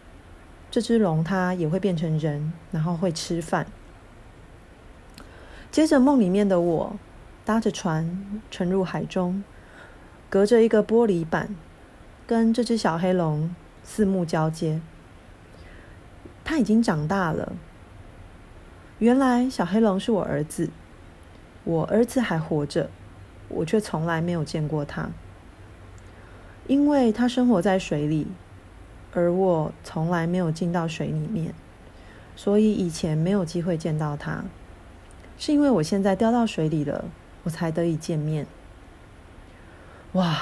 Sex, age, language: female, 30-49, Chinese